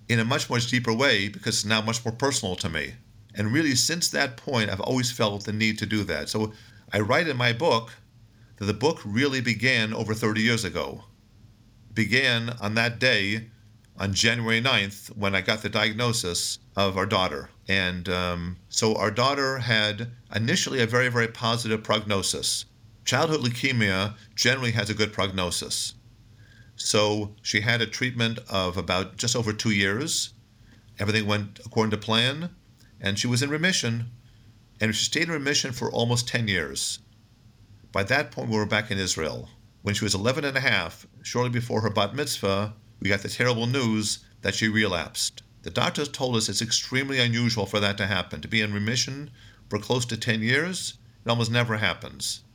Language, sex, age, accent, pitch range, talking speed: English, male, 50-69, American, 105-120 Hz, 180 wpm